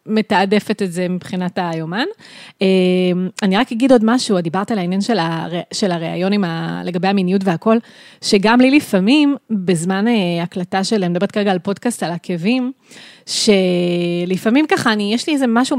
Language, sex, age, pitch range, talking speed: Hebrew, female, 20-39, 190-235 Hz, 150 wpm